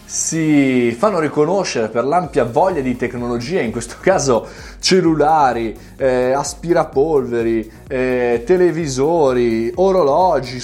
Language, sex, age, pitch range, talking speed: Italian, male, 20-39, 120-180 Hz, 95 wpm